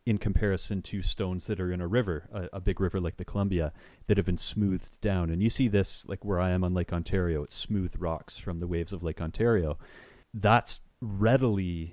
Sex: male